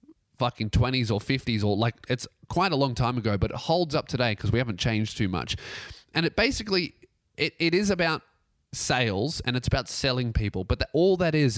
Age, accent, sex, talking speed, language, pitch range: 20-39, Australian, male, 205 wpm, English, 110-135 Hz